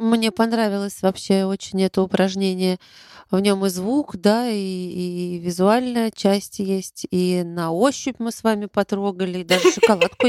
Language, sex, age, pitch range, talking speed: Russian, female, 20-39, 180-210 Hz, 150 wpm